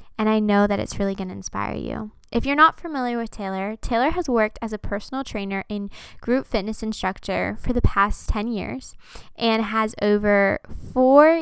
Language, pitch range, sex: English, 200-245 Hz, female